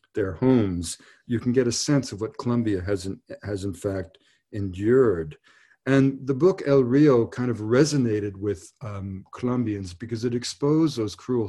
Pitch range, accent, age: 100-125 Hz, American, 50-69